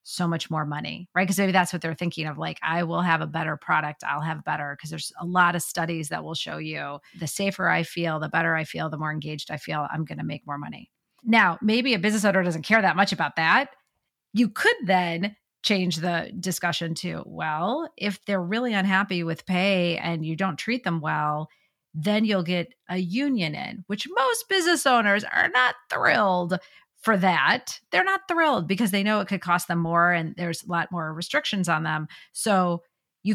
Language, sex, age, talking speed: English, female, 30-49, 210 wpm